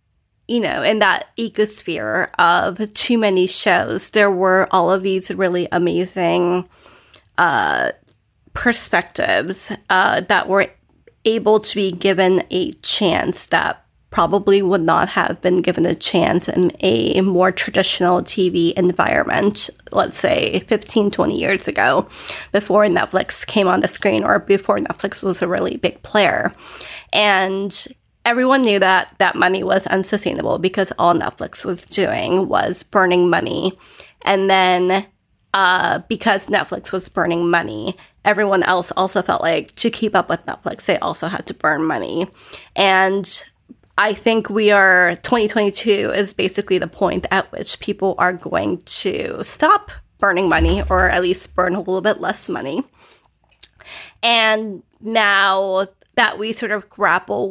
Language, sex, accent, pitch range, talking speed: English, female, American, 180-210 Hz, 145 wpm